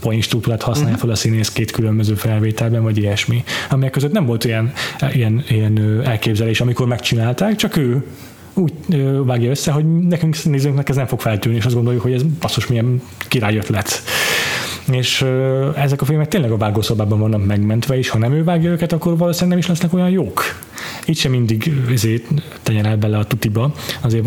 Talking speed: 180 wpm